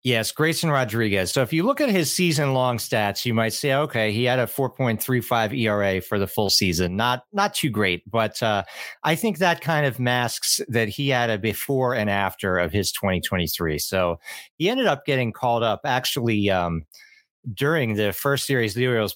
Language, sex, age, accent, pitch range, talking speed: English, male, 40-59, American, 100-125 Hz, 195 wpm